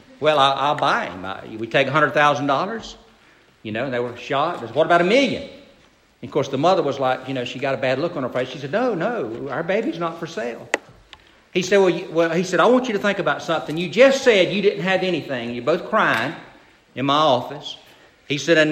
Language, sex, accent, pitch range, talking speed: English, male, American, 145-210 Hz, 240 wpm